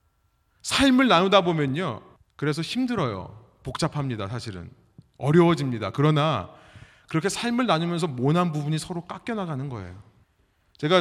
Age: 30-49